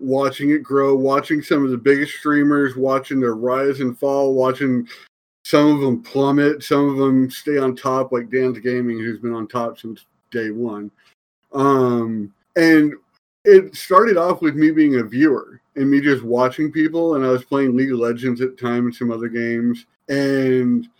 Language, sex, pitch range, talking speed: English, male, 120-140 Hz, 185 wpm